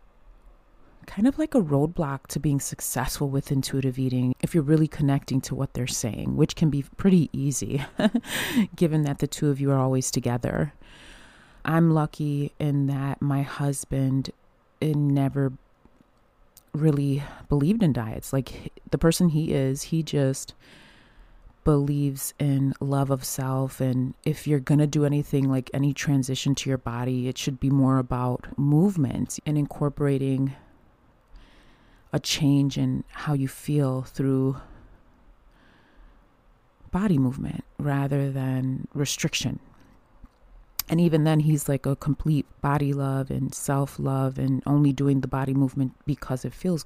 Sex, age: female, 30-49